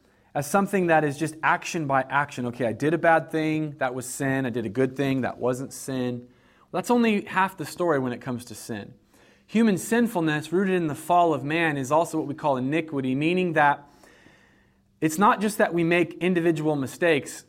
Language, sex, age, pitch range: English, male, 30-49, 140-175 Hz